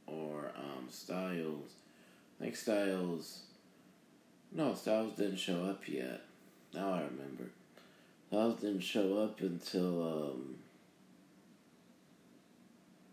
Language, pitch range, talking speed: English, 85-100 Hz, 90 wpm